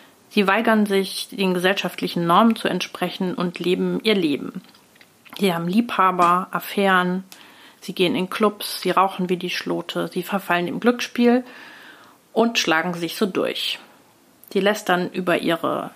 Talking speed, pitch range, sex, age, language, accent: 145 wpm, 180-215 Hz, female, 40-59, German, German